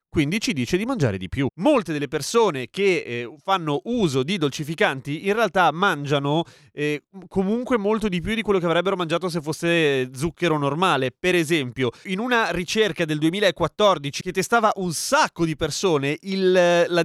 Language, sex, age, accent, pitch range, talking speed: Italian, male, 30-49, native, 135-180 Hz, 165 wpm